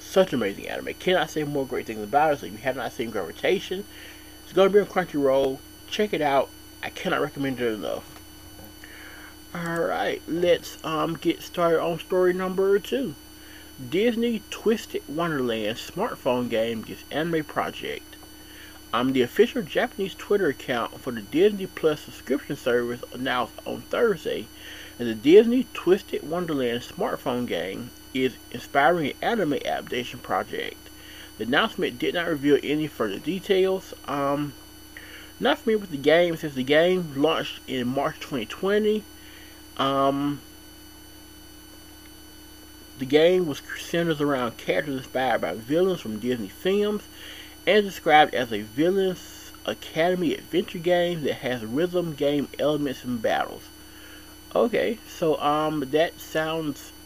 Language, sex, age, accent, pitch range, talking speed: English, male, 30-49, American, 135-185 Hz, 140 wpm